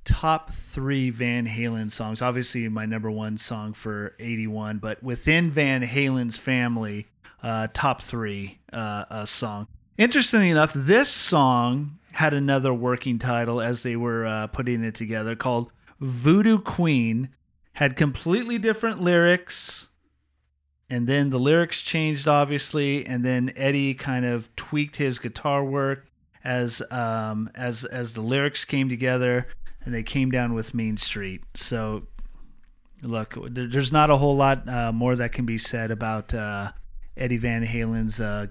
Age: 30-49